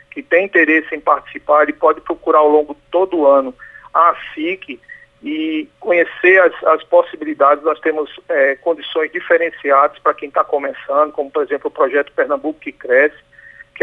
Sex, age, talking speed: male, 50-69, 165 wpm